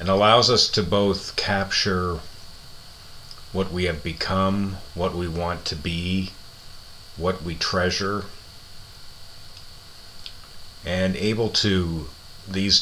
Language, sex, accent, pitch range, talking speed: English, male, American, 80-95 Hz, 105 wpm